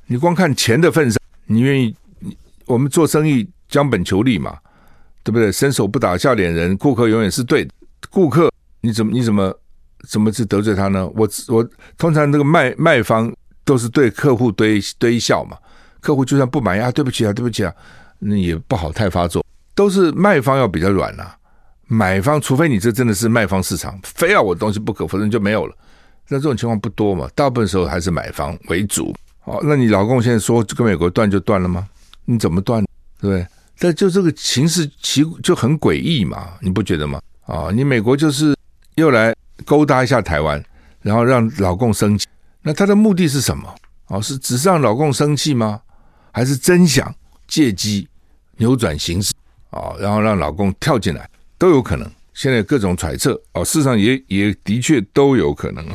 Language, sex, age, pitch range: Chinese, male, 60-79, 100-140 Hz